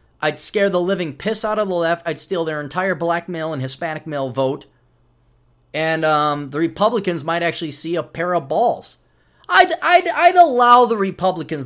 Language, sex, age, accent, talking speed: English, male, 30-49, American, 185 wpm